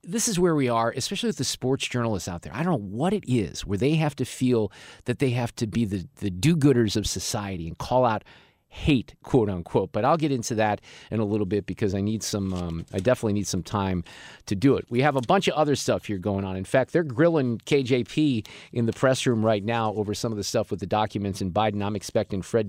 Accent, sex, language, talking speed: American, male, English, 250 wpm